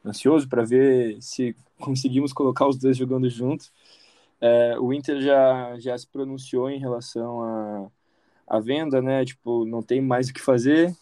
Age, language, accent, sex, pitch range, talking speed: 20-39, Portuguese, Brazilian, male, 120-140 Hz, 170 wpm